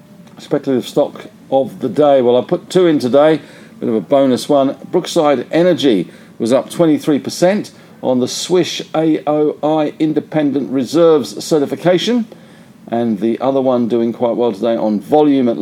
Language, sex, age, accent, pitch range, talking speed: English, male, 50-69, British, 130-175 Hz, 155 wpm